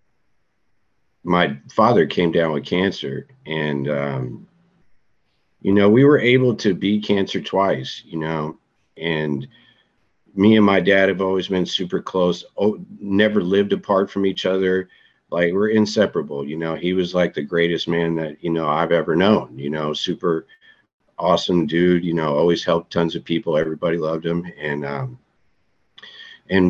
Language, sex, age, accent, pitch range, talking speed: English, male, 50-69, American, 80-95 Hz, 160 wpm